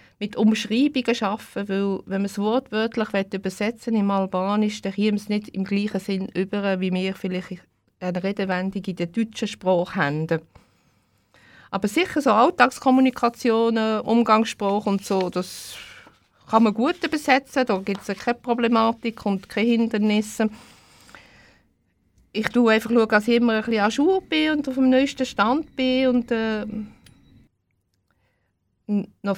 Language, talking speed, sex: German, 145 wpm, female